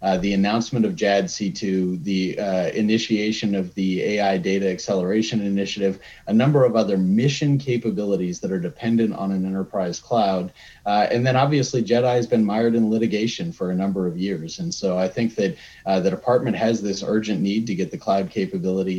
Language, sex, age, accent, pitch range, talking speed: English, male, 30-49, American, 95-120 Hz, 185 wpm